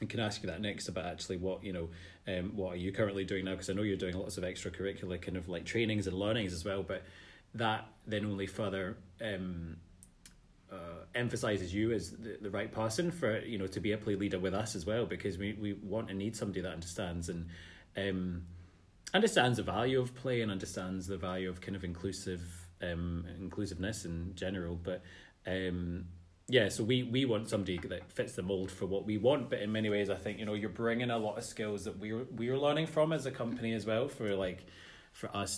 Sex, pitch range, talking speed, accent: male, 90-110 Hz, 225 wpm, British